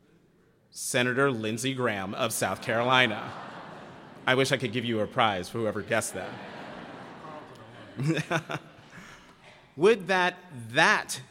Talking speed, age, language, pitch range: 110 wpm, 40-59, English, 125-165 Hz